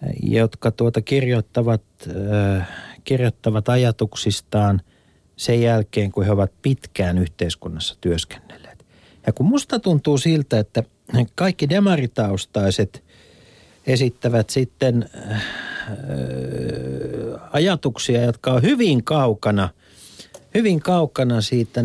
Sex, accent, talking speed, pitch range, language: male, native, 85 wpm, 105-150 Hz, Finnish